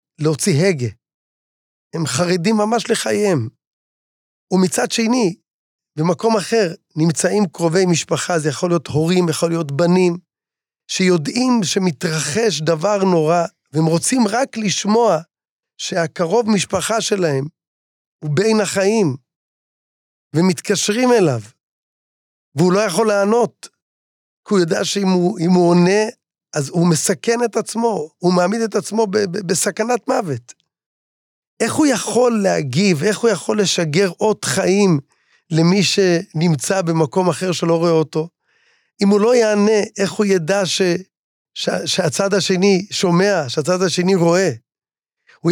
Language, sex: Hebrew, male